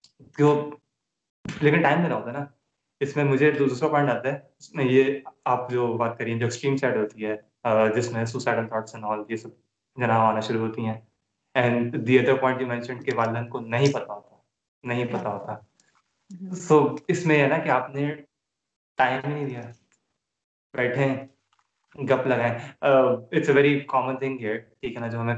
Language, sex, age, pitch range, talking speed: Urdu, male, 20-39, 115-135 Hz, 40 wpm